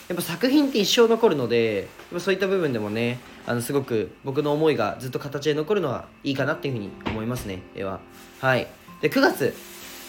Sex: male